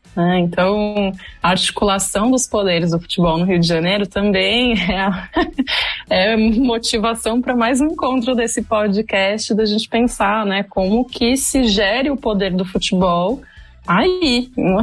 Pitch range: 175-230 Hz